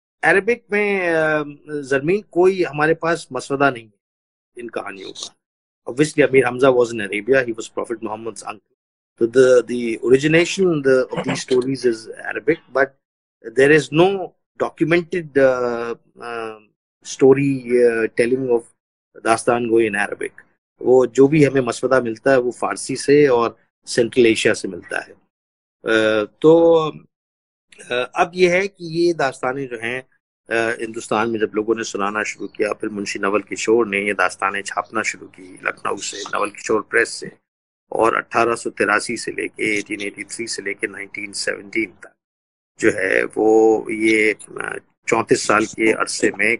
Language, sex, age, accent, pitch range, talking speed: Hindi, male, 30-49, native, 110-145 Hz, 105 wpm